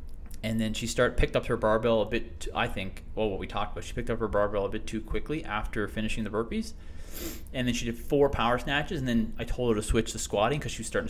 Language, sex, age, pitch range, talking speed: English, male, 20-39, 105-120 Hz, 270 wpm